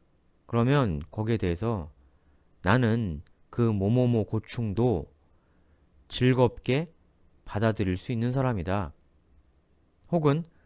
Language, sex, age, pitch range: Korean, male, 30-49, 80-130 Hz